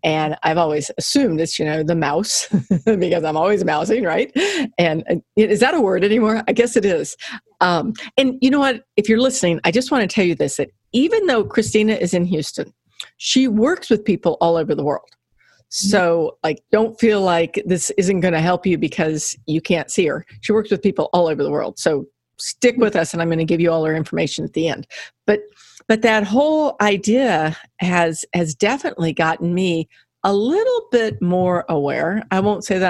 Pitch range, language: 170-225 Hz, English